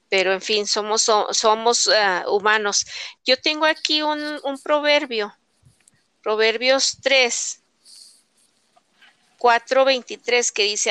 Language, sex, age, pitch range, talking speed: Spanish, female, 40-59, 215-255 Hz, 105 wpm